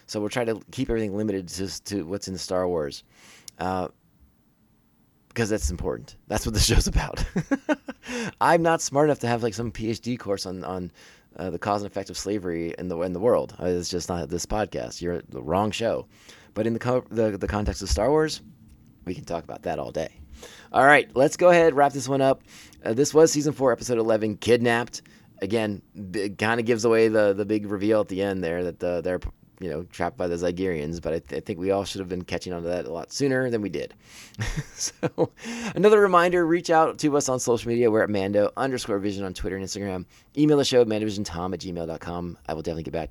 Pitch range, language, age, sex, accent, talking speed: 95-120 Hz, English, 30-49, male, American, 225 wpm